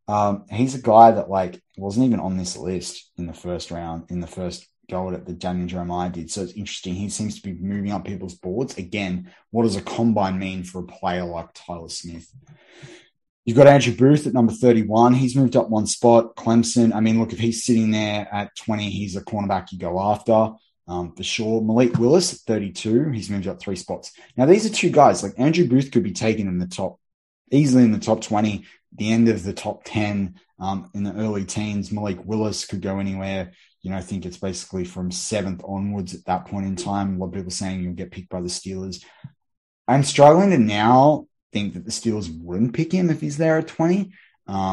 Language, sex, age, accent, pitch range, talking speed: English, male, 20-39, Australian, 95-115 Hz, 220 wpm